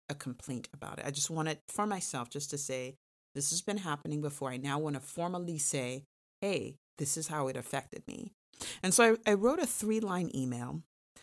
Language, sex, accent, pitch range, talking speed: English, female, American, 140-190 Hz, 210 wpm